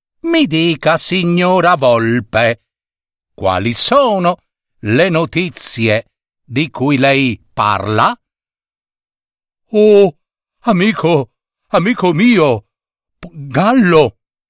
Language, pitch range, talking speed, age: Italian, 125-195 Hz, 70 wpm, 60-79